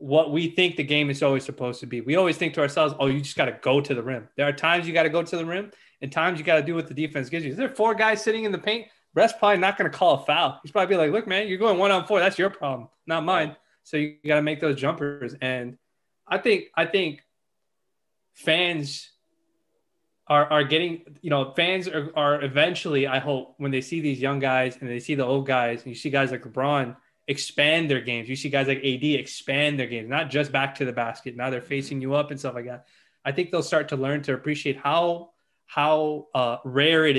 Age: 20-39